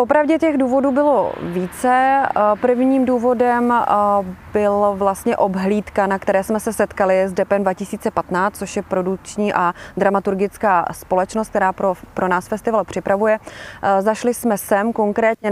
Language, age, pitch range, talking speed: Czech, 20-39, 195-230 Hz, 130 wpm